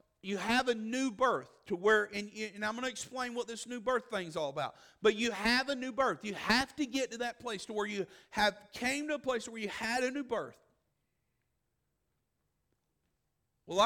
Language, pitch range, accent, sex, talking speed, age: English, 205-245 Hz, American, male, 210 wpm, 50-69